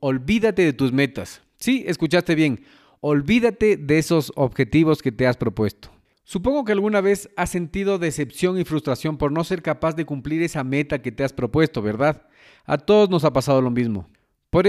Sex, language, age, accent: male, Spanish, 40-59, Mexican